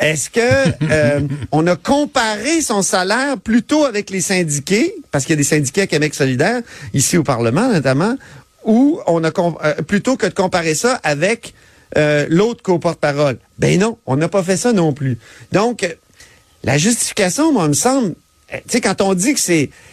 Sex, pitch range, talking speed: male, 155-235 Hz, 195 wpm